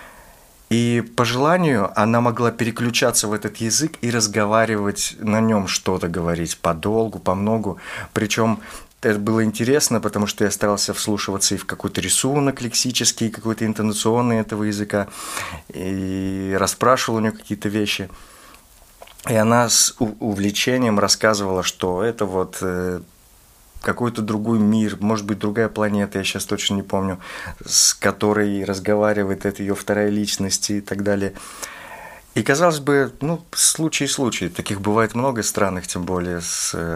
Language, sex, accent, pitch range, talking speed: Russian, male, native, 95-115 Hz, 135 wpm